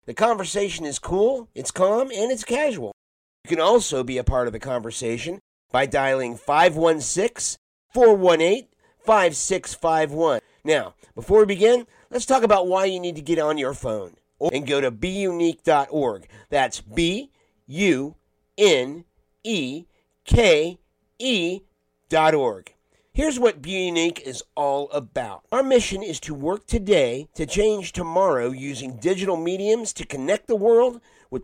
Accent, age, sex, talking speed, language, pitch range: American, 50-69, male, 130 wpm, English, 130-200 Hz